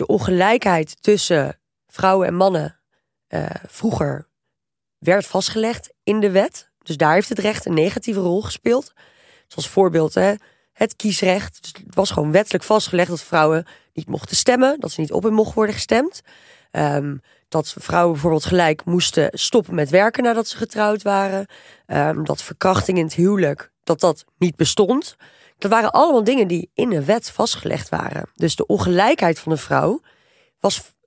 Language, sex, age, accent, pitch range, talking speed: Dutch, female, 20-39, Dutch, 165-215 Hz, 170 wpm